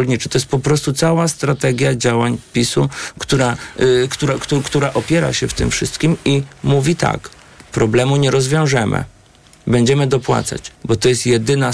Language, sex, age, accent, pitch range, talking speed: Polish, male, 40-59, native, 120-145 Hz, 140 wpm